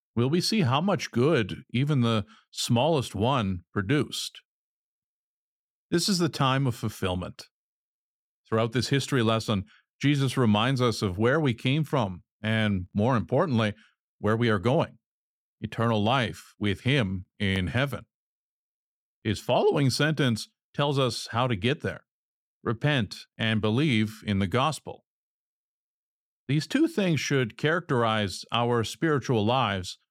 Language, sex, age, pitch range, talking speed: English, male, 50-69, 110-135 Hz, 130 wpm